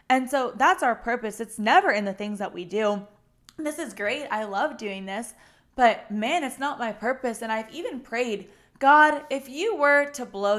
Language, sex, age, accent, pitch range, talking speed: English, female, 10-29, American, 205-270 Hz, 205 wpm